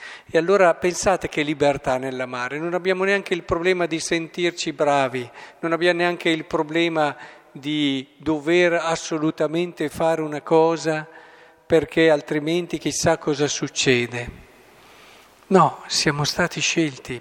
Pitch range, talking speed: 135-170 Hz, 120 wpm